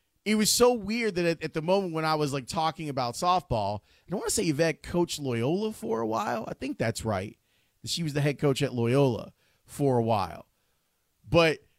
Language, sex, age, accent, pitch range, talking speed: English, male, 30-49, American, 125-175 Hz, 215 wpm